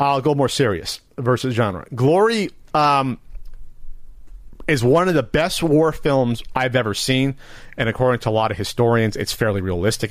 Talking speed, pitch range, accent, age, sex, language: 165 wpm, 105-135 Hz, American, 40-59, male, English